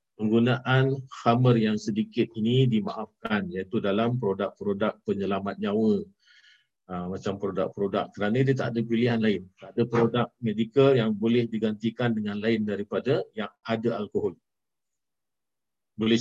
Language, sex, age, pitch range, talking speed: Malay, male, 50-69, 105-130 Hz, 125 wpm